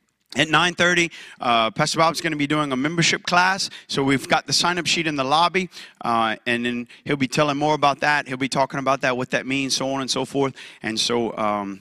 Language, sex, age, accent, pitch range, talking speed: English, male, 30-49, American, 120-170 Hz, 235 wpm